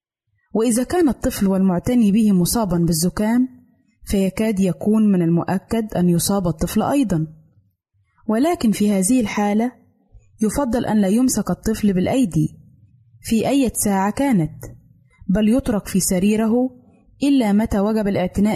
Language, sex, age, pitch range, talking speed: Arabic, female, 20-39, 170-235 Hz, 120 wpm